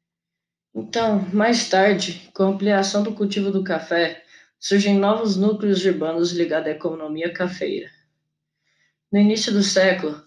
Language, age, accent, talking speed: Portuguese, 20-39, Brazilian, 130 wpm